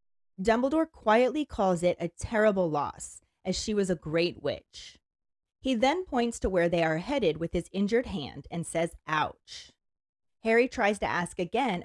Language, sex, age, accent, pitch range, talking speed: English, female, 30-49, American, 170-240 Hz, 165 wpm